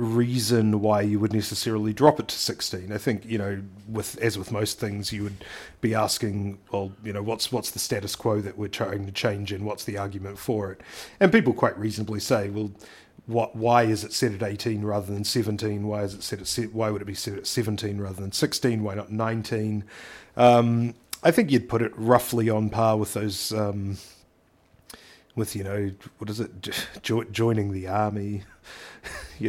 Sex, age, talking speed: male, 30-49, 200 wpm